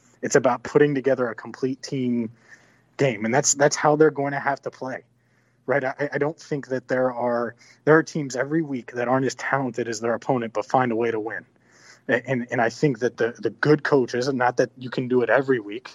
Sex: male